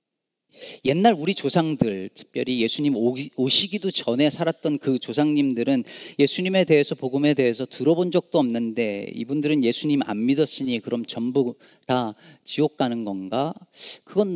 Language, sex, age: Korean, male, 40-59